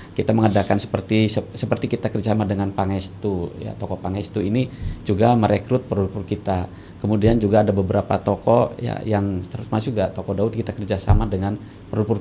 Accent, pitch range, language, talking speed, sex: native, 100-120 Hz, Indonesian, 150 wpm, male